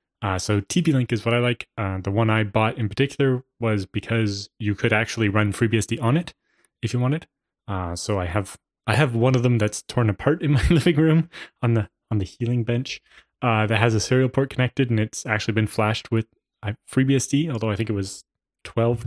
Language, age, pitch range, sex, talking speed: English, 20-39, 105-125 Hz, male, 215 wpm